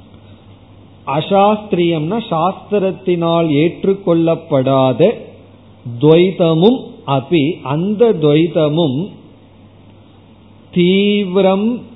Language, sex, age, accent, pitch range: Tamil, male, 40-59, native, 130-180 Hz